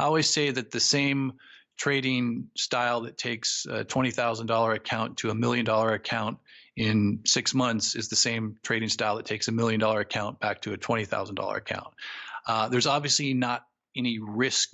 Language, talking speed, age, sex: English, 175 wpm, 40-59, male